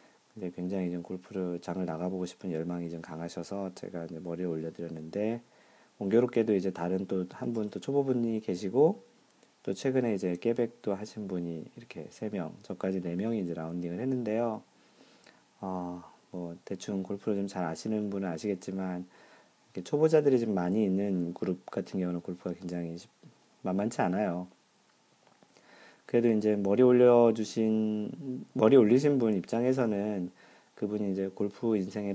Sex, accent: male, native